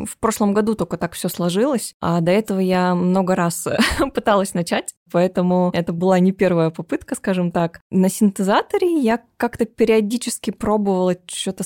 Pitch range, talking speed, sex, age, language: 165-195 Hz, 160 wpm, female, 20-39, Russian